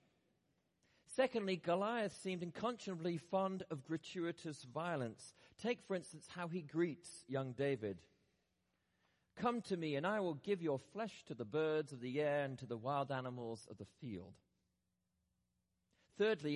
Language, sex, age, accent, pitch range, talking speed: English, male, 40-59, British, 110-170 Hz, 145 wpm